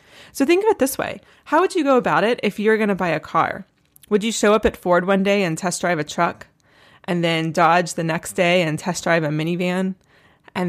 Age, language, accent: 20-39, English, American